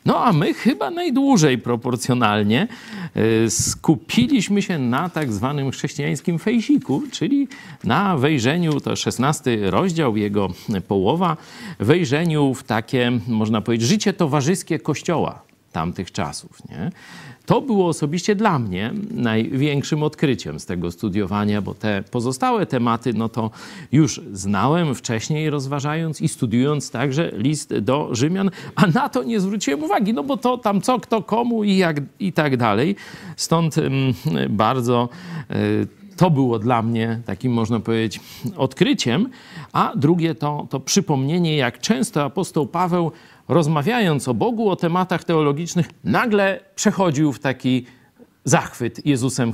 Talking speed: 130 wpm